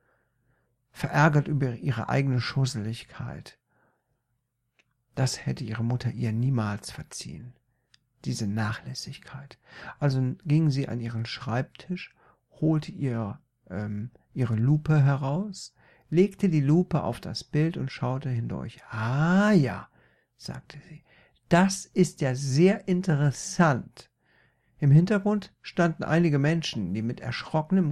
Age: 60-79